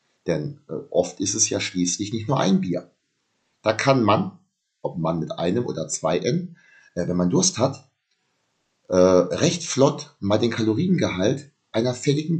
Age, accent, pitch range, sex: 30-49, German, 95-145 Hz, male